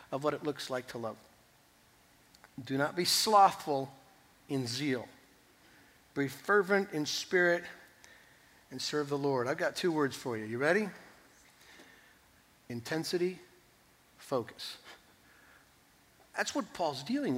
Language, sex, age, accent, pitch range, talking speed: English, male, 60-79, American, 140-195 Hz, 120 wpm